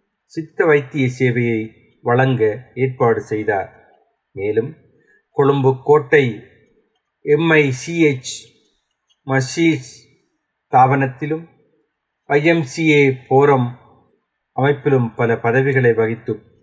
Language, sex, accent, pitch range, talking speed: Tamil, male, native, 115-145 Hz, 65 wpm